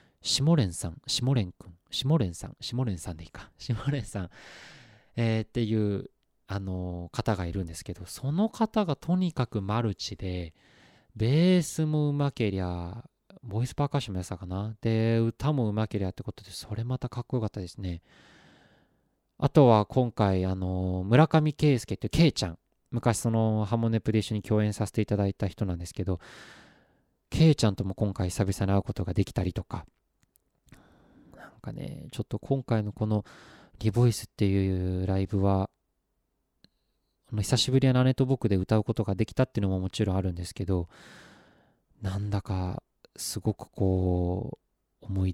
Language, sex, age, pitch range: Japanese, male, 20-39, 95-120 Hz